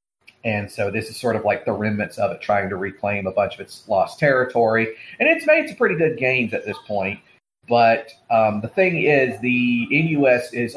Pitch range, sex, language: 105-135 Hz, male, English